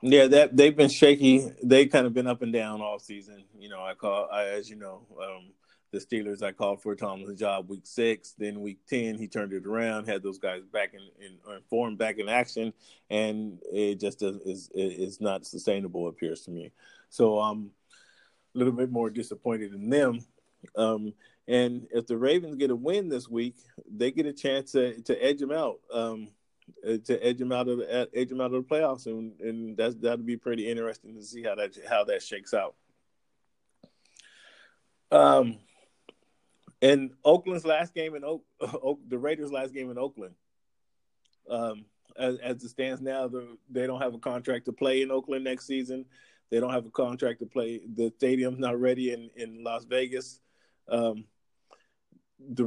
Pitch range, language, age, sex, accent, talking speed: 110-130 Hz, English, 40-59, male, American, 185 wpm